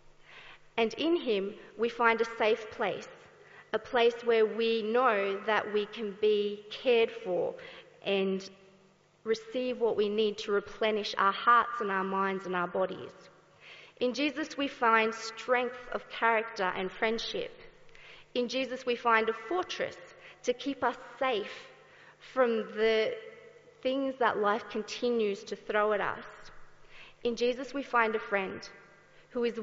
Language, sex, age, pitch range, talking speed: English, female, 40-59, 205-255 Hz, 145 wpm